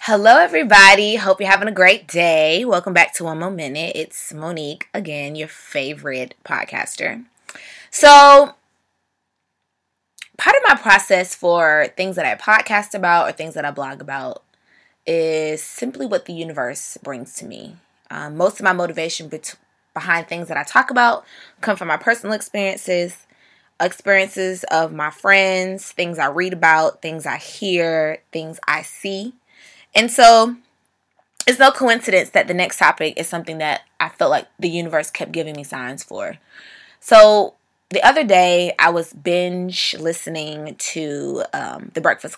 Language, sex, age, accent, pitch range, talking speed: English, female, 20-39, American, 160-210 Hz, 155 wpm